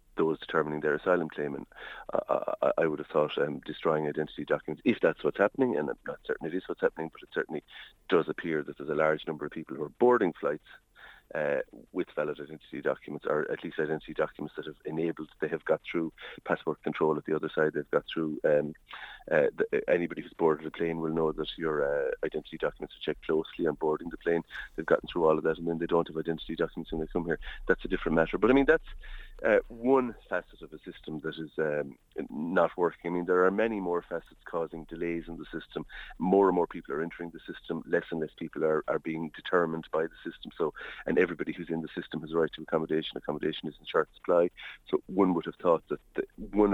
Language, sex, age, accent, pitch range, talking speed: English, male, 40-59, Irish, 80-125 Hz, 235 wpm